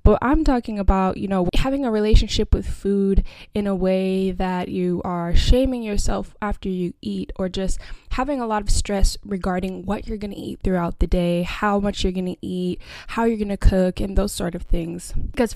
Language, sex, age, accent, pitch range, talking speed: English, female, 10-29, American, 180-205 Hz, 210 wpm